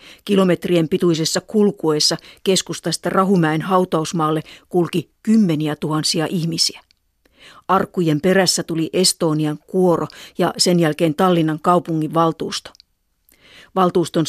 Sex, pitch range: female, 160-190 Hz